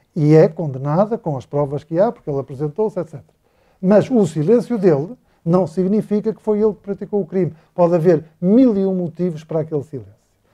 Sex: male